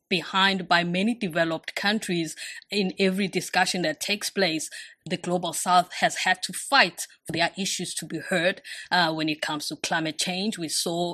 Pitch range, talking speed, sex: 175-215 Hz, 180 wpm, female